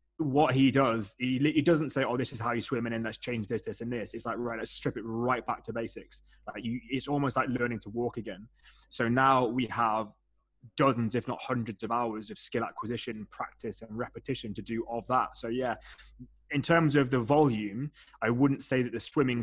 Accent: British